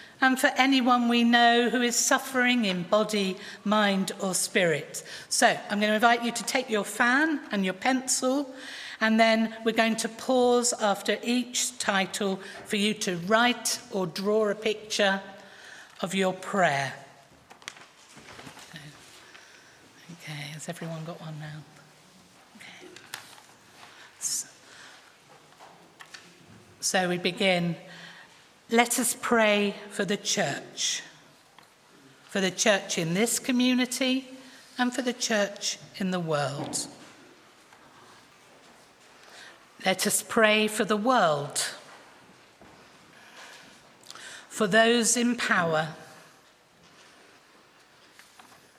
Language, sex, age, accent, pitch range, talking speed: English, female, 40-59, British, 190-240 Hz, 105 wpm